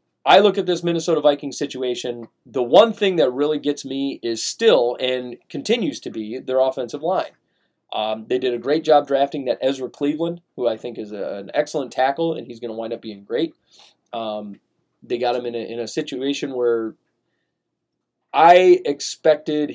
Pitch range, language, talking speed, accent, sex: 120-155 Hz, English, 185 wpm, American, male